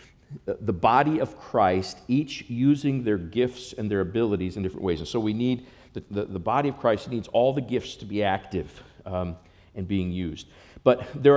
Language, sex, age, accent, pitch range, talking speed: English, male, 50-69, American, 110-140 Hz, 195 wpm